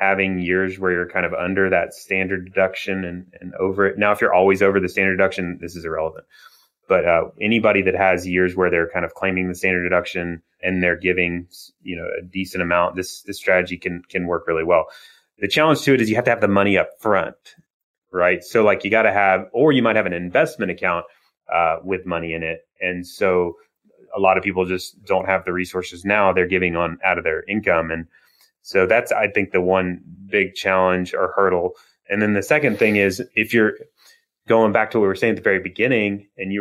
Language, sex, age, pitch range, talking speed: English, male, 30-49, 90-100 Hz, 225 wpm